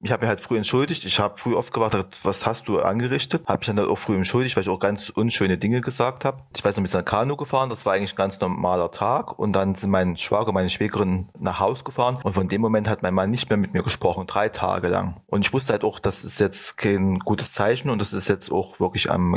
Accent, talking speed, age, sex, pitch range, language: German, 275 wpm, 30-49, male, 95-115 Hz, German